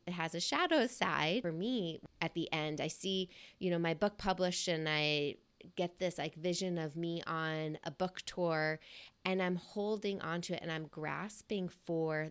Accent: American